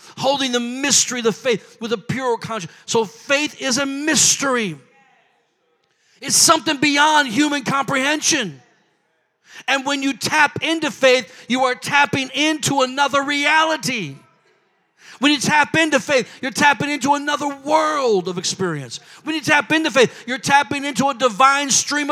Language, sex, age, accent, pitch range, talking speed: English, male, 40-59, American, 250-300 Hz, 150 wpm